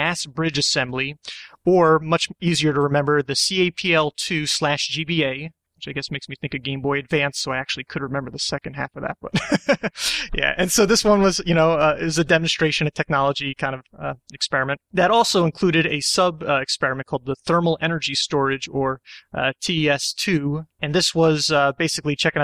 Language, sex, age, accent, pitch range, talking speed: English, male, 30-49, American, 140-165 Hz, 180 wpm